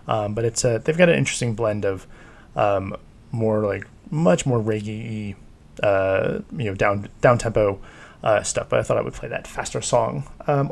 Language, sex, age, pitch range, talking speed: English, male, 20-39, 110-135 Hz, 190 wpm